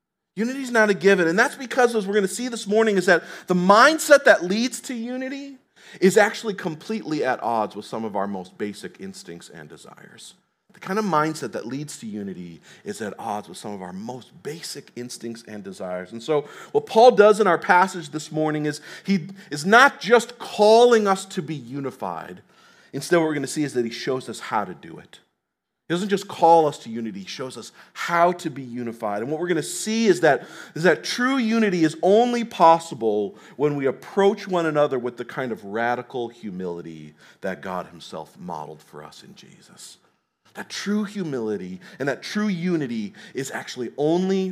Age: 40-59